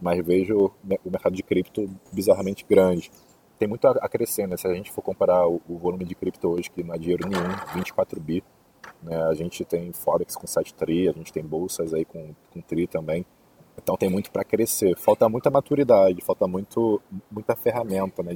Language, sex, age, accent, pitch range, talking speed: Portuguese, male, 20-39, Brazilian, 85-95 Hz, 195 wpm